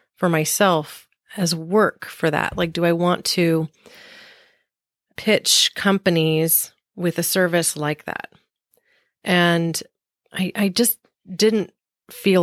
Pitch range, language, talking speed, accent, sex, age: 165-195 Hz, English, 115 wpm, American, female, 30-49